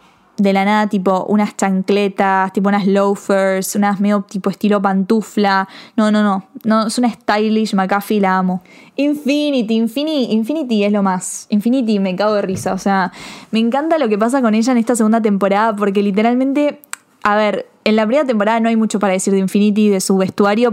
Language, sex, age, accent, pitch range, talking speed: Spanish, female, 10-29, Argentinian, 195-230 Hz, 190 wpm